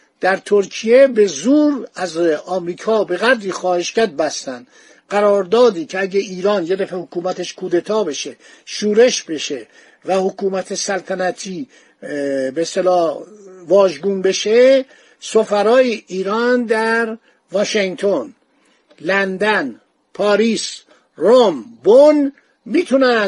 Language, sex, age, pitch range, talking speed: Persian, male, 50-69, 180-230 Hz, 95 wpm